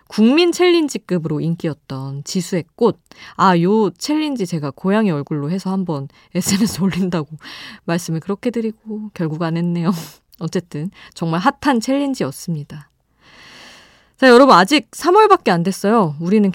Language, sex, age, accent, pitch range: Korean, female, 20-39, native, 165-245 Hz